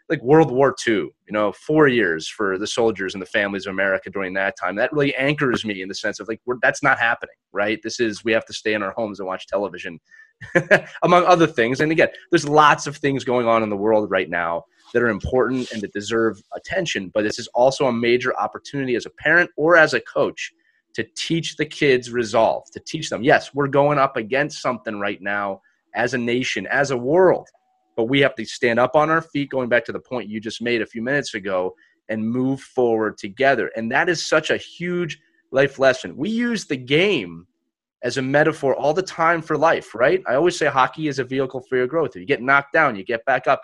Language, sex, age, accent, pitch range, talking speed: English, male, 30-49, American, 115-160 Hz, 230 wpm